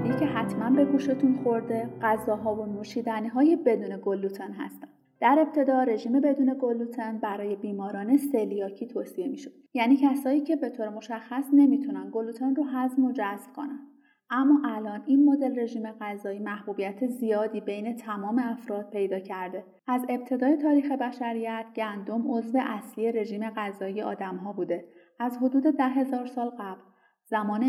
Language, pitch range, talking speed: Persian, 215-275 Hz, 140 wpm